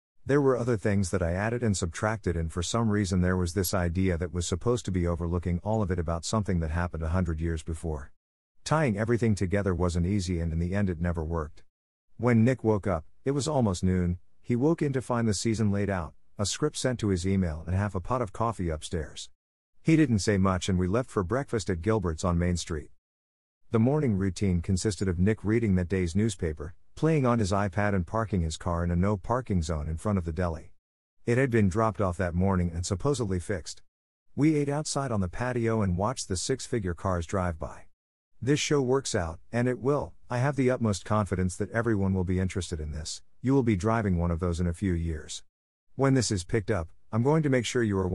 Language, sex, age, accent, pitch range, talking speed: English, male, 50-69, American, 85-115 Hz, 225 wpm